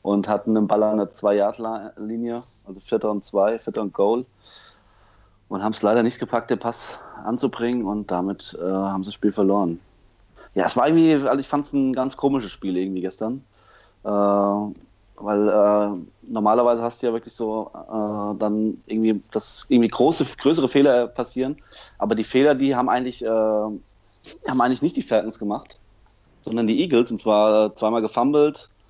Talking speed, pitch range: 170 wpm, 105-130 Hz